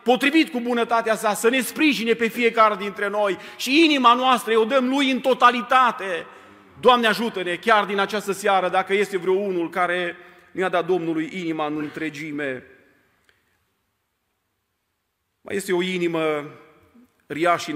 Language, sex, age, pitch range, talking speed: Romanian, male, 40-59, 125-170 Hz, 140 wpm